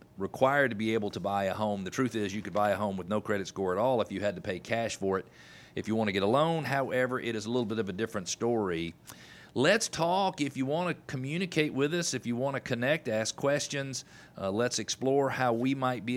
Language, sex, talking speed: English, male, 260 wpm